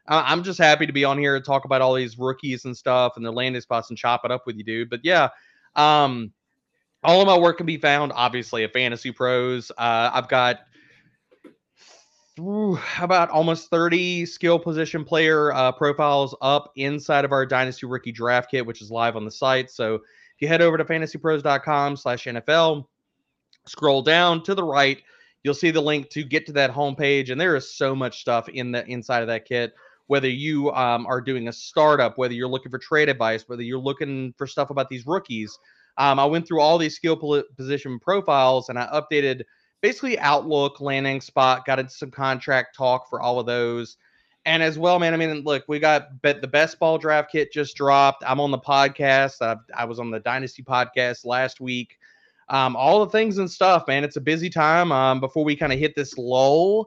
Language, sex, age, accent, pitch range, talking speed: English, male, 30-49, American, 125-155 Hz, 205 wpm